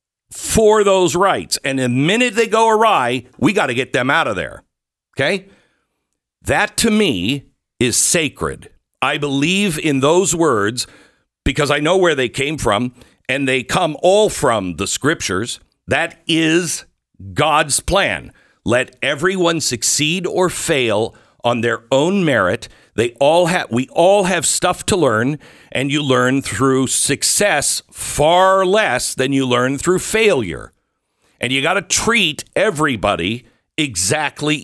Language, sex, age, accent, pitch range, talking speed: English, male, 60-79, American, 120-170 Hz, 145 wpm